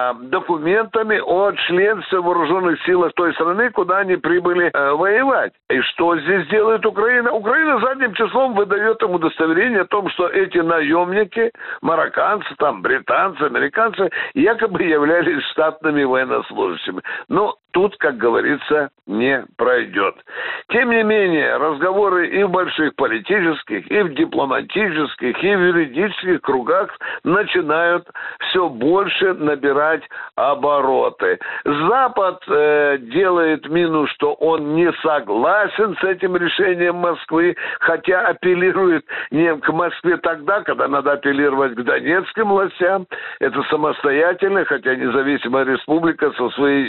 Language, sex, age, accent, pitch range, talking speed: Russian, male, 60-79, native, 150-215 Hz, 120 wpm